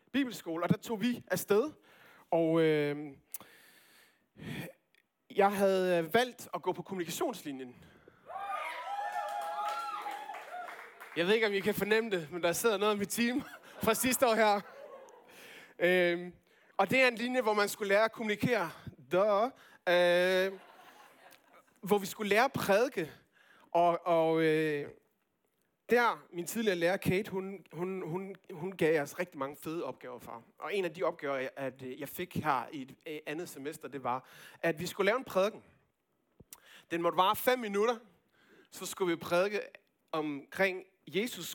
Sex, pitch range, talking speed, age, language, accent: male, 160-225 Hz, 155 wpm, 20-39, Danish, native